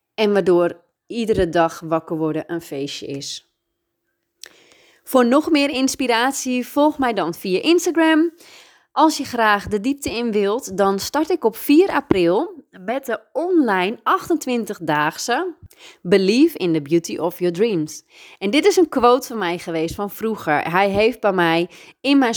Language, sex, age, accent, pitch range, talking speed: Dutch, female, 30-49, Dutch, 180-255 Hz, 155 wpm